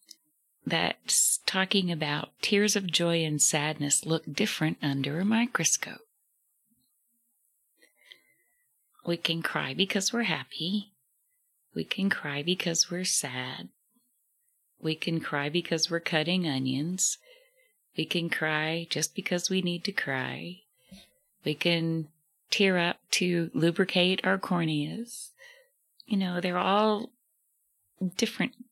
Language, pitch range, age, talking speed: English, 155-215 Hz, 30-49, 115 wpm